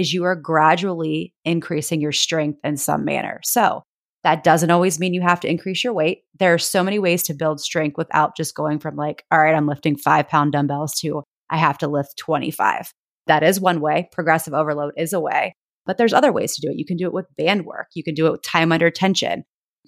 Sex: female